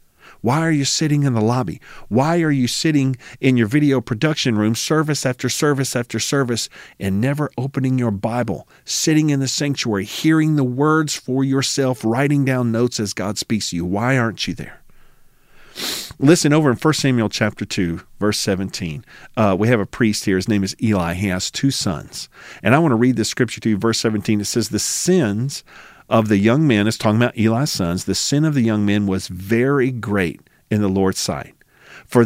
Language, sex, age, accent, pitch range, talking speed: English, male, 40-59, American, 110-145 Hz, 200 wpm